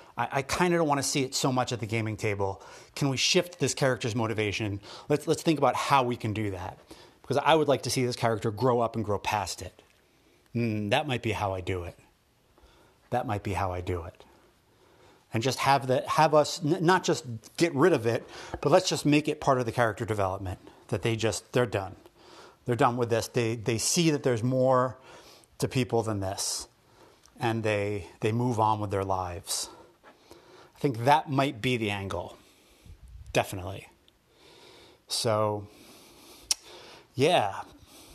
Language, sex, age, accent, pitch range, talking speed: English, male, 30-49, American, 110-155 Hz, 185 wpm